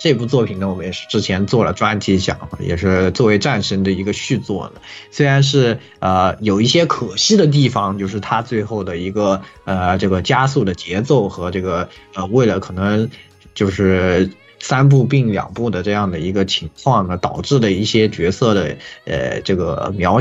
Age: 20-39